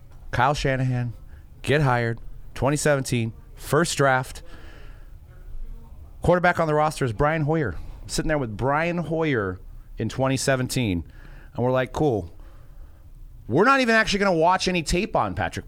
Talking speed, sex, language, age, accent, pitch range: 135 wpm, male, English, 30-49, American, 115-160 Hz